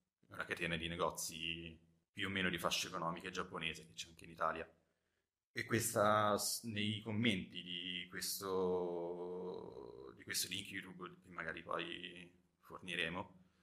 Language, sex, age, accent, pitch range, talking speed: Italian, male, 30-49, native, 85-95 Hz, 130 wpm